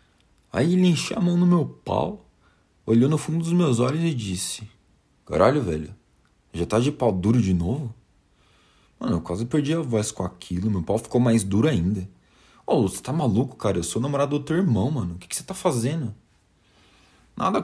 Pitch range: 90-130 Hz